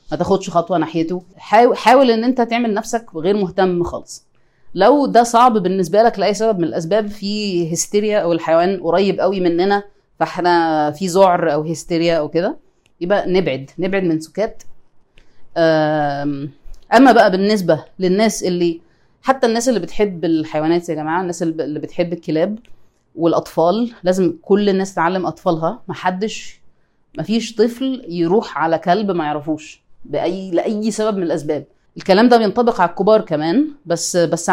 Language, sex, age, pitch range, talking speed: Arabic, female, 30-49, 170-225 Hz, 145 wpm